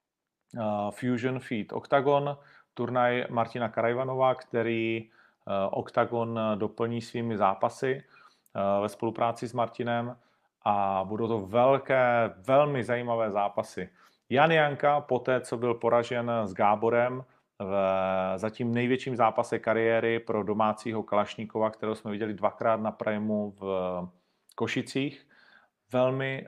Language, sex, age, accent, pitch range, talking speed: Czech, male, 40-59, native, 105-120 Hz, 105 wpm